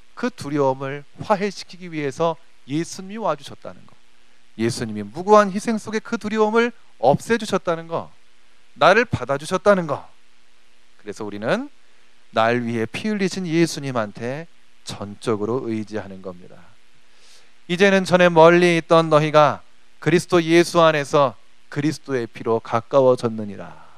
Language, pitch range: Korean, 115-190 Hz